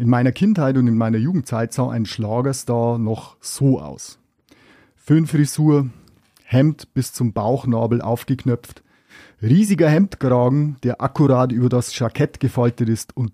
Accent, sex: German, male